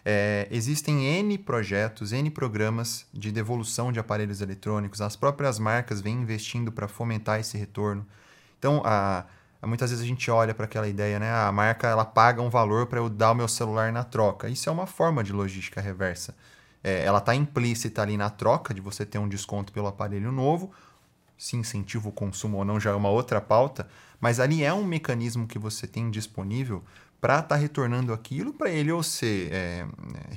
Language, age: Portuguese, 20-39